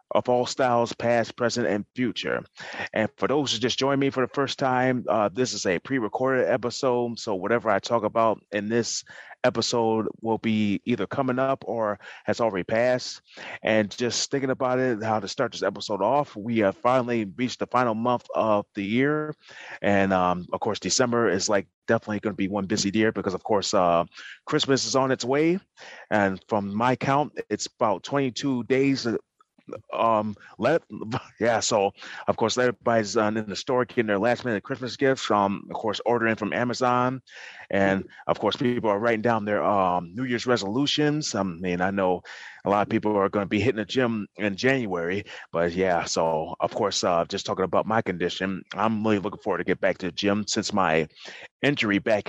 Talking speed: 195 wpm